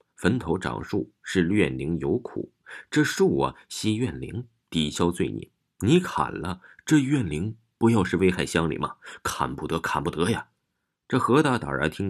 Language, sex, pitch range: Chinese, male, 80-110 Hz